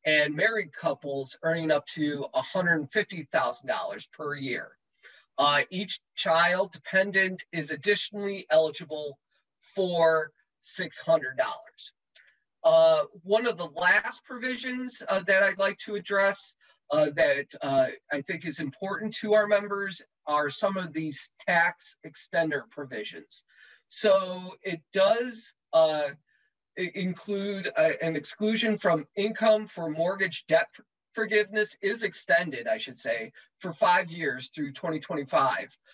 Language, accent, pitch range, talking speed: English, American, 155-210 Hz, 115 wpm